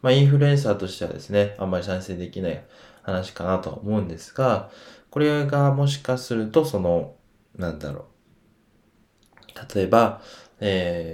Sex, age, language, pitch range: male, 20-39, Japanese, 90-120 Hz